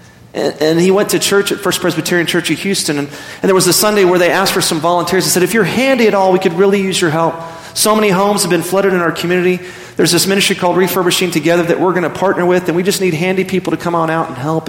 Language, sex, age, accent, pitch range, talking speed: English, male, 30-49, American, 155-185 Hz, 280 wpm